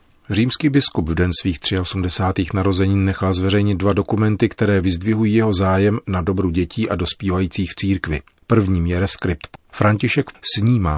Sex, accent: male, native